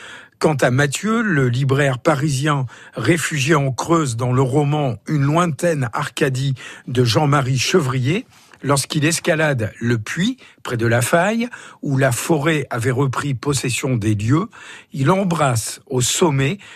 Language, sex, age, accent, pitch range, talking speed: French, male, 50-69, French, 130-165 Hz, 135 wpm